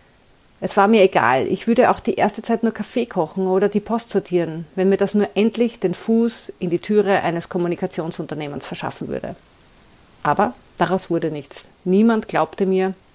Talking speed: 175 wpm